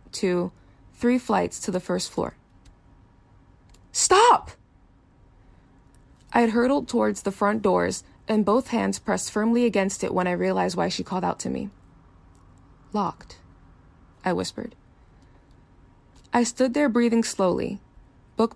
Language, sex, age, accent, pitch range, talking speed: English, female, 20-39, American, 175-230 Hz, 130 wpm